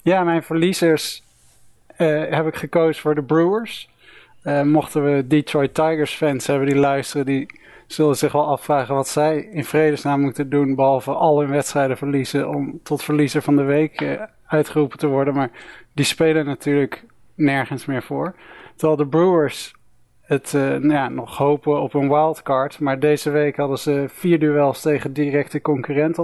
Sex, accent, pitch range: male, Dutch, 145-160 Hz